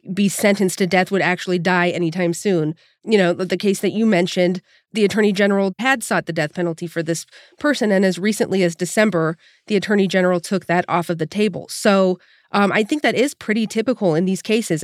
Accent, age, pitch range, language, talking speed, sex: American, 40-59, 175-210 Hz, English, 210 wpm, female